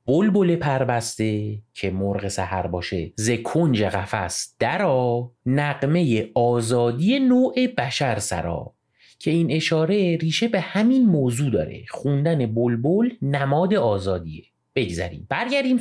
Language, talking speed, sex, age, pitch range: Persian, 115 wpm, male, 30-49, 95-130 Hz